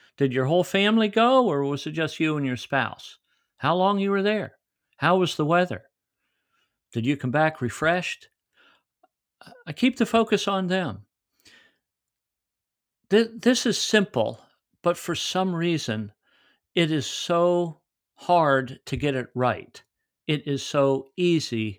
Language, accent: English, American